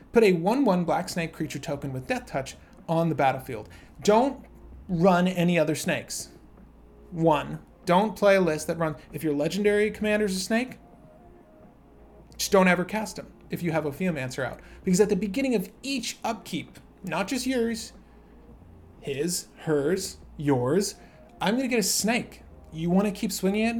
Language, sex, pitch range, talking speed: English, male, 160-210 Hz, 170 wpm